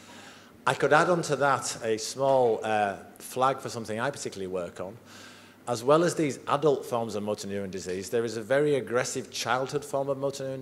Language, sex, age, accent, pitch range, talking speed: English, male, 50-69, British, 110-135 Hz, 200 wpm